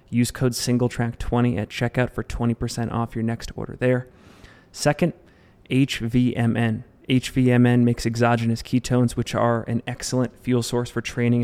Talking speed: 135 wpm